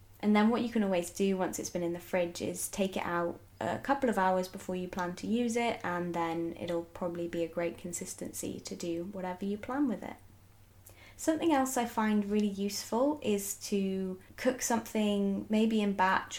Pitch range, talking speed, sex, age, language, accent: 175-210 Hz, 200 wpm, female, 20-39, English, British